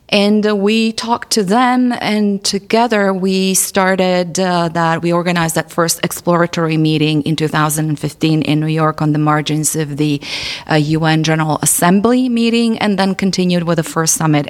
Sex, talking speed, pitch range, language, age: female, 165 wpm, 155-195 Hz, English, 30-49